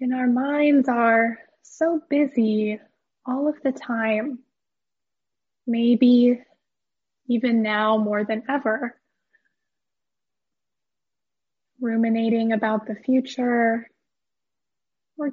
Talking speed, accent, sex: 80 wpm, American, female